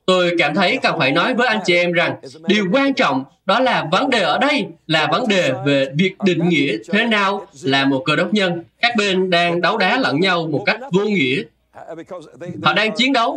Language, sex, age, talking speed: Vietnamese, male, 20-39, 220 wpm